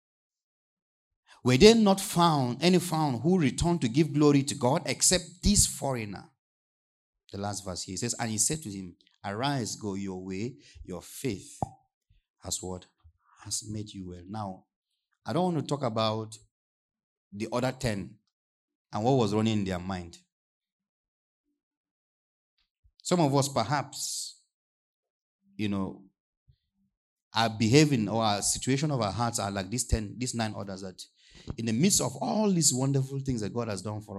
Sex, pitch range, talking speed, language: male, 100-135 Hz, 160 wpm, English